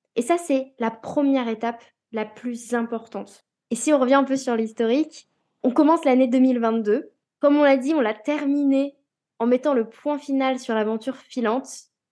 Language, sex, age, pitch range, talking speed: French, female, 10-29, 245-305 Hz, 180 wpm